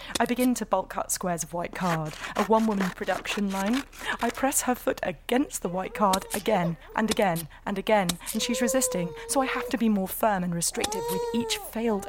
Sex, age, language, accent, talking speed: female, 30-49, English, British, 205 wpm